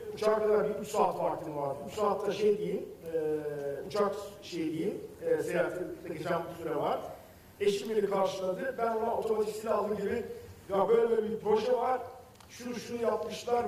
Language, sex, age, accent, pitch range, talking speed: Turkish, male, 50-69, native, 185-230 Hz, 160 wpm